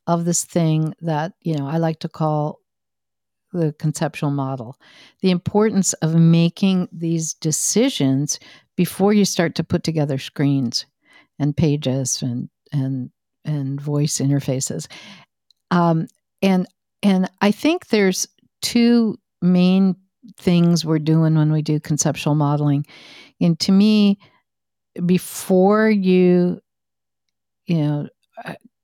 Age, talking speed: 60-79, 120 wpm